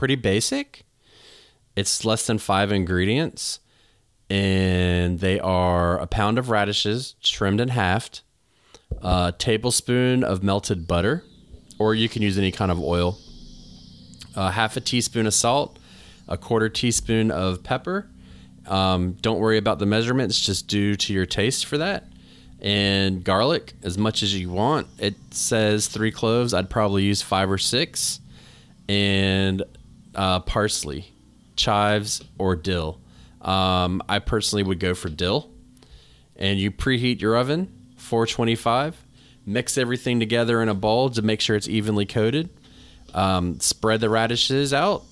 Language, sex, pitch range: English, male, 90-115 Hz